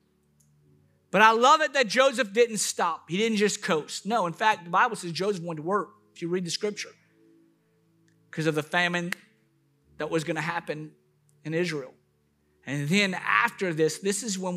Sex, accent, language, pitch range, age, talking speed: male, American, English, 150-185 Hz, 50-69, 180 wpm